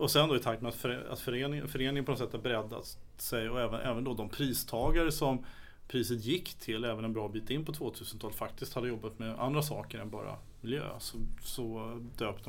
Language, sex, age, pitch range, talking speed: Swedish, male, 30-49, 110-130 Hz, 215 wpm